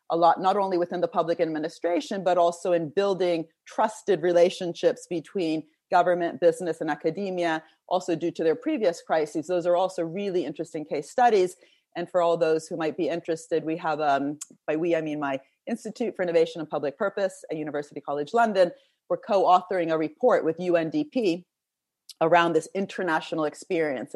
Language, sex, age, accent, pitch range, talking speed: English, female, 30-49, American, 160-190 Hz, 165 wpm